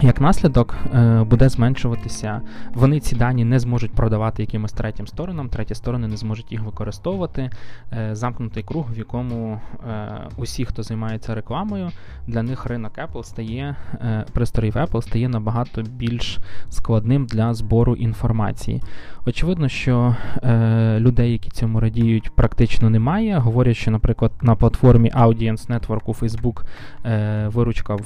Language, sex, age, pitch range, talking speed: Ukrainian, male, 20-39, 110-120 Hz, 125 wpm